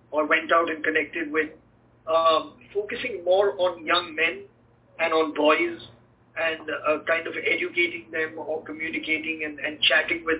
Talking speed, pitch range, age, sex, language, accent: 155 wpm, 155-185 Hz, 50-69, male, English, Indian